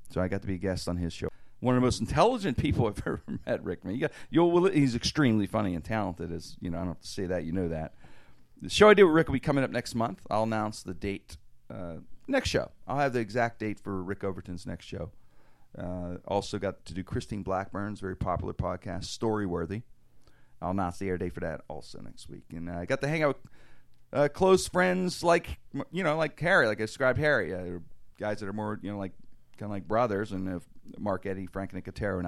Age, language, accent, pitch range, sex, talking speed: 40-59, English, American, 90-125 Hz, male, 240 wpm